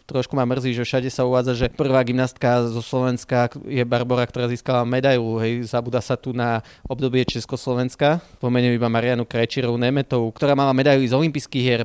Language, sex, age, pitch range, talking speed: Slovak, male, 20-39, 120-130 Hz, 165 wpm